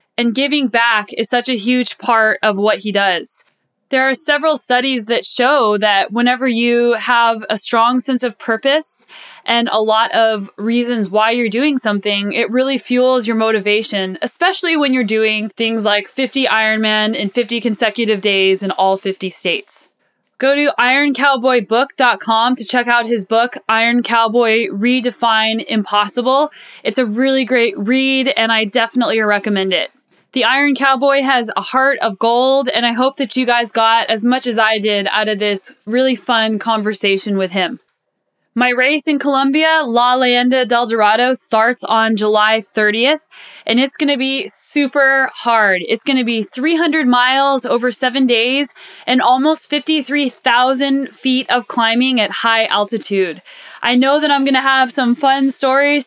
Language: English